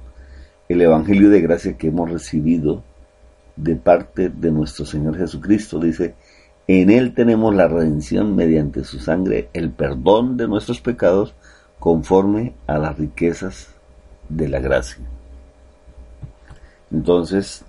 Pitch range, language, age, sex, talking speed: 65-90 Hz, Spanish, 50-69, male, 120 wpm